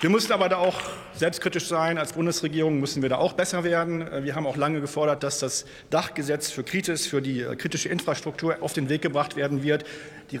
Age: 40-59